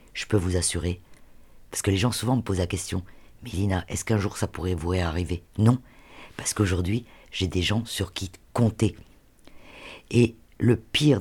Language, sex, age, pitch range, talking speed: French, female, 50-69, 90-115 Hz, 175 wpm